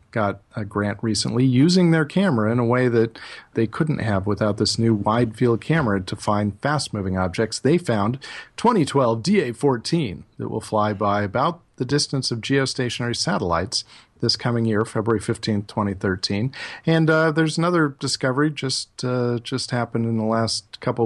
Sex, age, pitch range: male, 40-59, 105-130 Hz